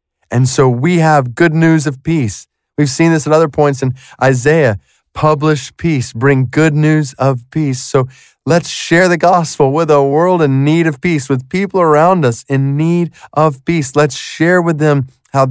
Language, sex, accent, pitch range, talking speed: English, male, American, 125-150 Hz, 185 wpm